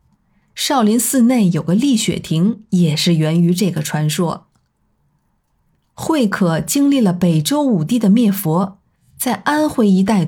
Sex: female